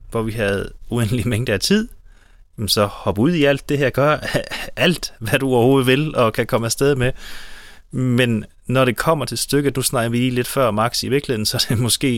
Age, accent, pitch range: 30-49, native, 105-130 Hz